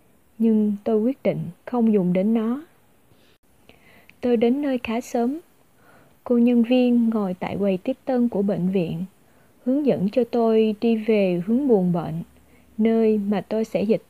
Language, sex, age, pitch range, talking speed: Vietnamese, female, 20-39, 195-235 Hz, 160 wpm